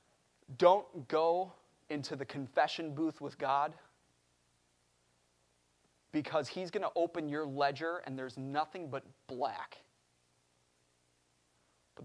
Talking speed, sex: 105 wpm, male